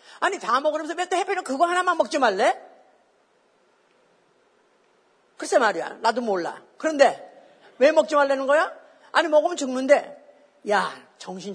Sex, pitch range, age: female, 220-350 Hz, 40-59